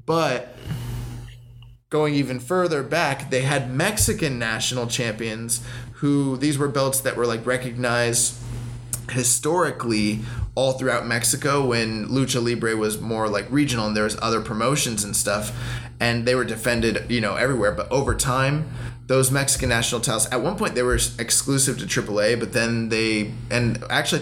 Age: 20-39